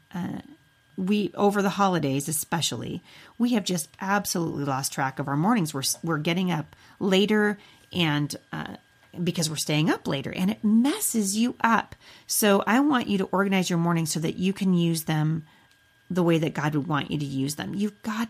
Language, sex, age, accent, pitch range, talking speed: English, female, 40-59, American, 155-195 Hz, 190 wpm